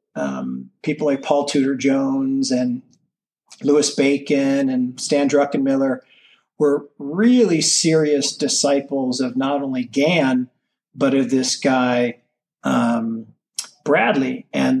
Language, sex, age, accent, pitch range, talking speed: English, male, 40-59, American, 130-160 Hz, 110 wpm